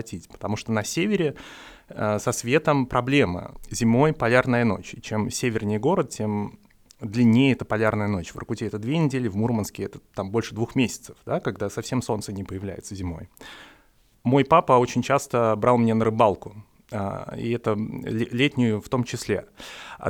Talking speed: 160 wpm